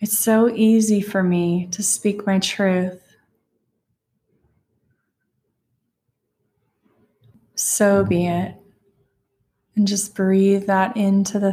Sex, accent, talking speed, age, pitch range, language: female, American, 95 wpm, 20-39, 180-205 Hz, English